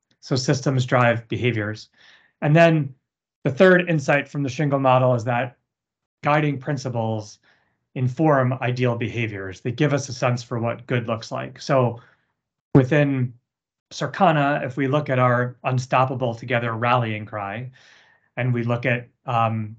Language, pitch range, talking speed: English, 115-135 Hz, 145 wpm